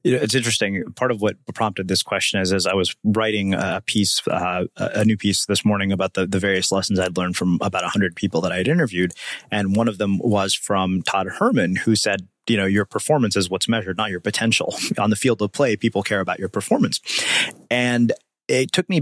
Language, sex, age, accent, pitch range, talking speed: English, male, 30-49, American, 100-115 Hz, 225 wpm